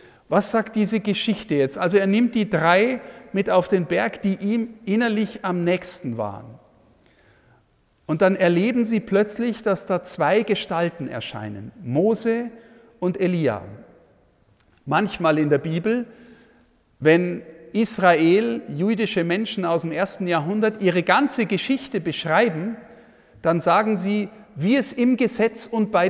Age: 50-69